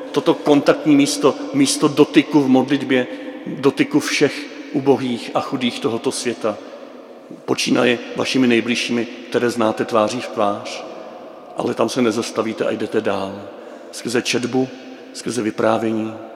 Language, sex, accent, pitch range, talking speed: Czech, male, native, 115-150 Hz, 120 wpm